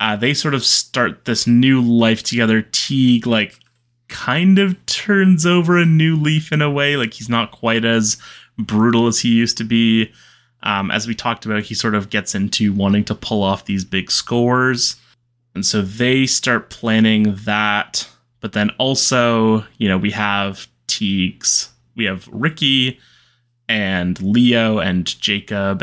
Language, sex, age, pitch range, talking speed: English, male, 20-39, 105-120 Hz, 165 wpm